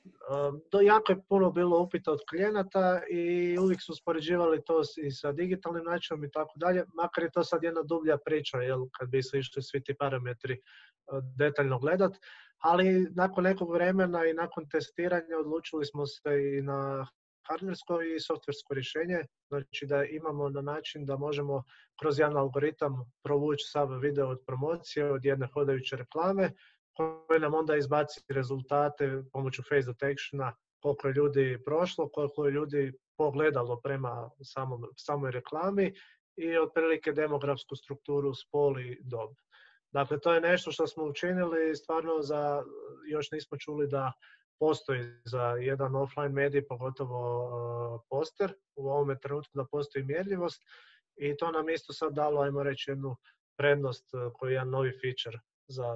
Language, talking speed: Croatian, 150 wpm